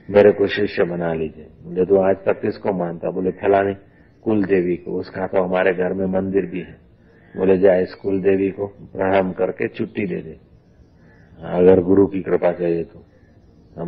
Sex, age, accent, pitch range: male, 50-69, native, 90-100 Hz